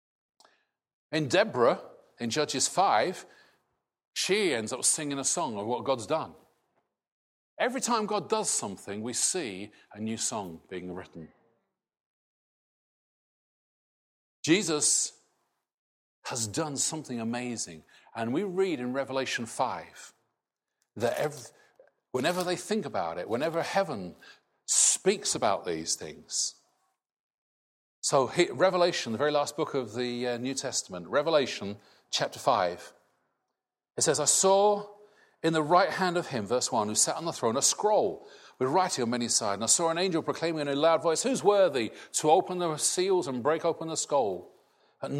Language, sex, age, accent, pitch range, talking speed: English, male, 50-69, British, 120-180 Hz, 145 wpm